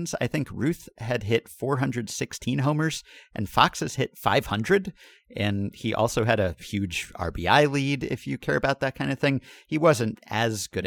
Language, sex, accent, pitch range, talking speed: English, male, American, 85-120 Hz, 175 wpm